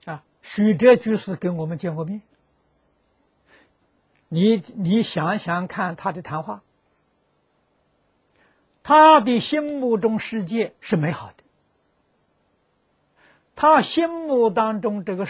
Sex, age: male, 60-79